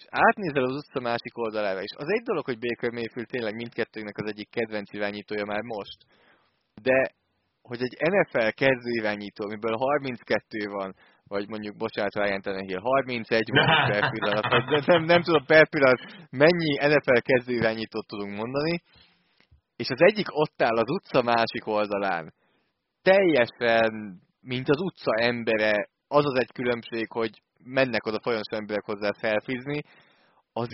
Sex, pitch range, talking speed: male, 110-135 Hz, 135 wpm